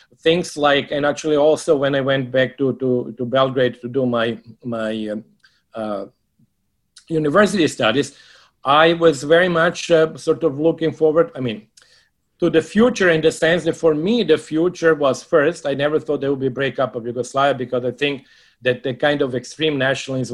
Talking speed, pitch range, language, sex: 185 wpm, 125-155 Hz, English, male